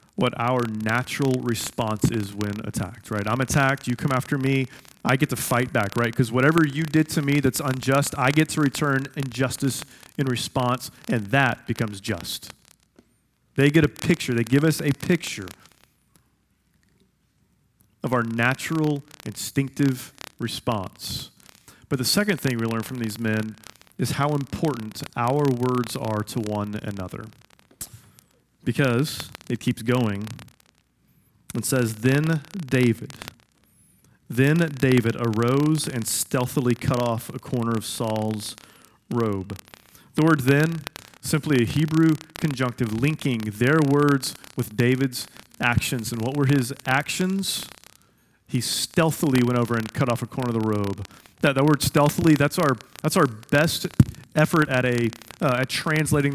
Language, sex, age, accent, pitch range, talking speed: English, male, 30-49, American, 115-145 Hz, 145 wpm